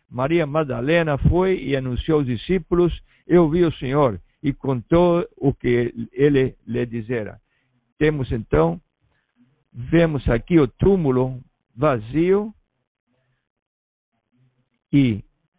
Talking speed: 100 wpm